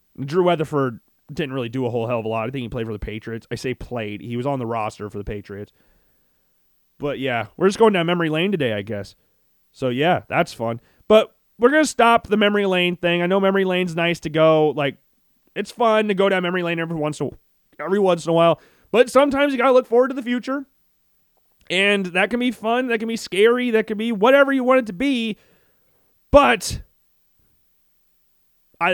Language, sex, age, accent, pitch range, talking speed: English, male, 30-49, American, 145-225 Hz, 215 wpm